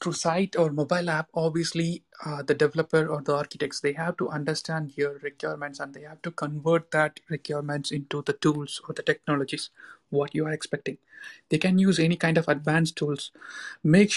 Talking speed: 185 wpm